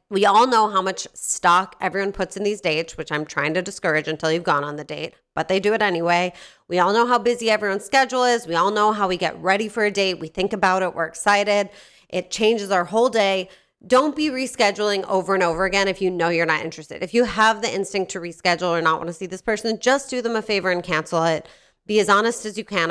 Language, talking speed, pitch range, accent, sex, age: English, 255 wpm, 170-215 Hz, American, female, 30-49